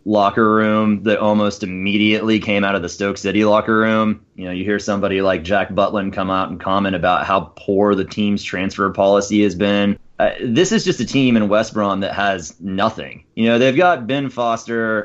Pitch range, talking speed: 95-110 Hz, 205 wpm